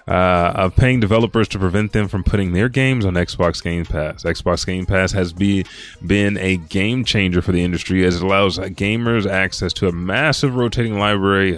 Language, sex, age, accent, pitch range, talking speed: English, male, 20-39, American, 85-105 Hz, 190 wpm